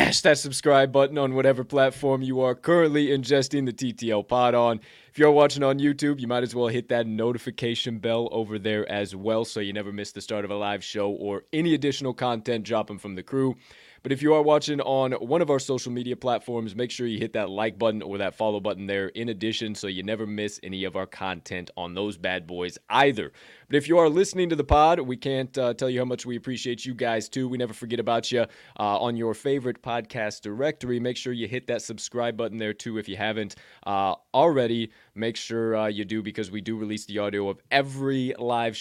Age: 20-39